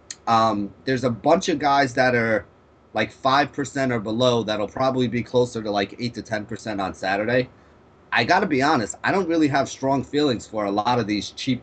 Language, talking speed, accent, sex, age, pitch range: English, 205 wpm, American, male, 30-49, 105-130 Hz